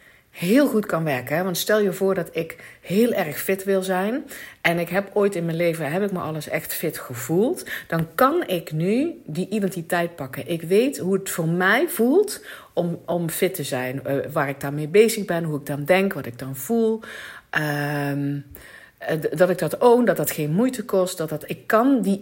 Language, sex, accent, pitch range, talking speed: Dutch, female, Dutch, 145-195 Hz, 210 wpm